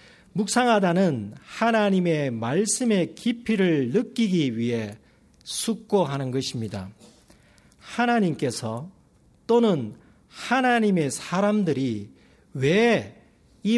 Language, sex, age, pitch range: Korean, male, 40-59, 130-200 Hz